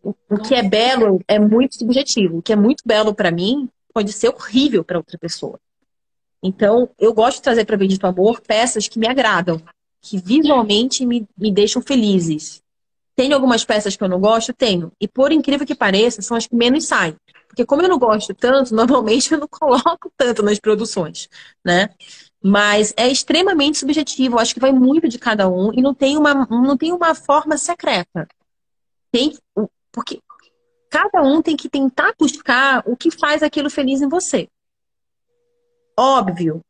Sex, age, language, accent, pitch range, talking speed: female, 30-49, Portuguese, Brazilian, 205-285 Hz, 175 wpm